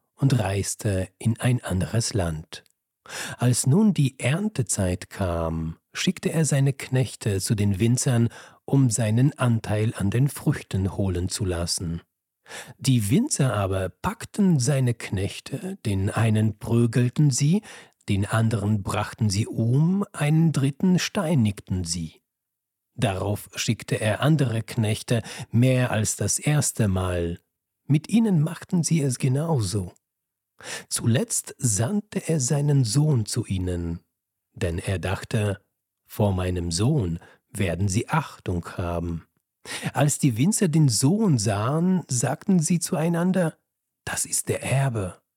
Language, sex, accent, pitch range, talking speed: German, male, German, 100-150 Hz, 120 wpm